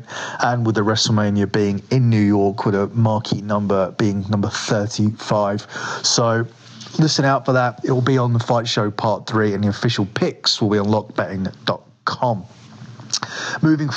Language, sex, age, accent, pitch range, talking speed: English, male, 30-49, British, 110-130 Hz, 160 wpm